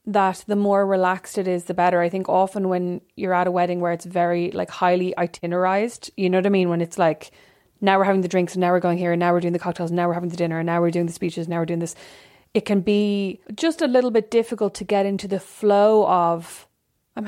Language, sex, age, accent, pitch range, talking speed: English, female, 30-49, Irish, 175-200 Hz, 270 wpm